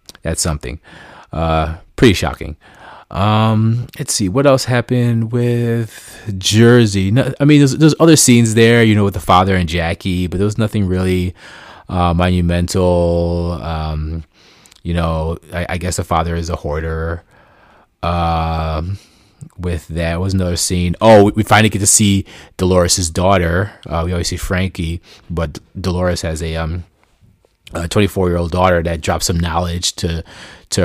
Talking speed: 155 wpm